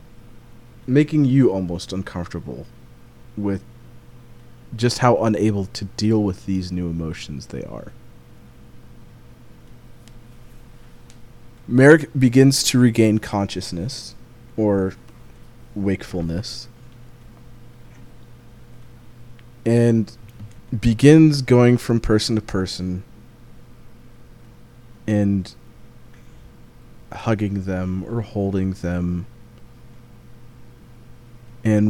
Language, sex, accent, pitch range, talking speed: English, male, American, 105-120 Hz, 70 wpm